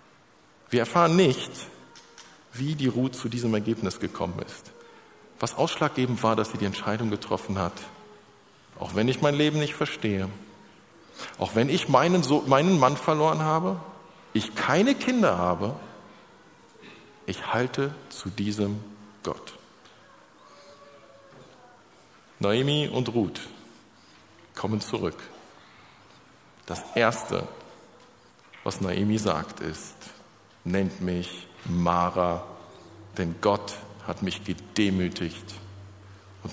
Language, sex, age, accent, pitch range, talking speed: German, male, 50-69, German, 95-130 Hz, 105 wpm